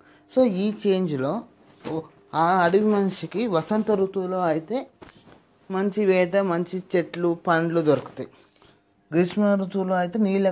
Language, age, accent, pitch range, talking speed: Telugu, 20-39, native, 155-200 Hz, 105 wpm